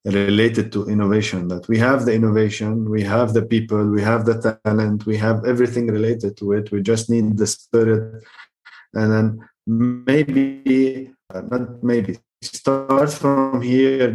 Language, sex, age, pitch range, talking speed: English, male, 20-39, 105-125 Hz, 155 wpm